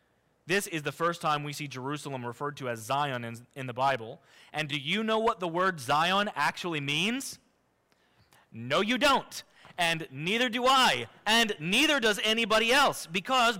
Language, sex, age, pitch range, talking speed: English, male, 30-49, 165-225 Hz, 170 wpm